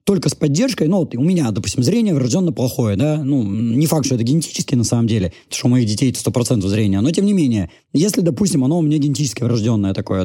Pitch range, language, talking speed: 120-170 Hz, Russian, 235 wpm